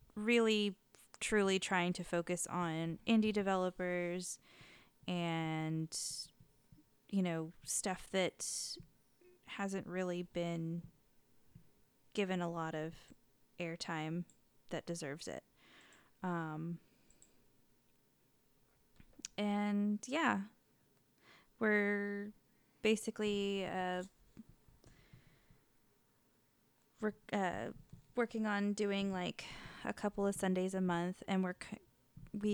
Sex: female